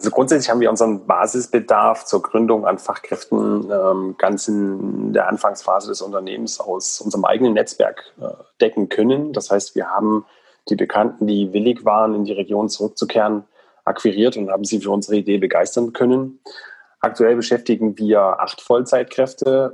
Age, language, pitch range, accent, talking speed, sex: 30-49, German, 100-110 Hz, German, 155 wpm, male